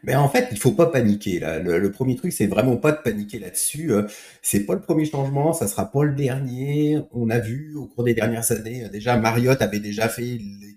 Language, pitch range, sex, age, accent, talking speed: French, 110-145 Hz, male, 30-49, French, 245 wpm